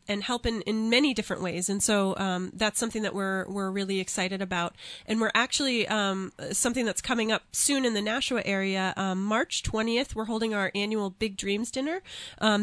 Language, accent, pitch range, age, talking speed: English, American, 195-225 Hz, 30-49, 200 wpm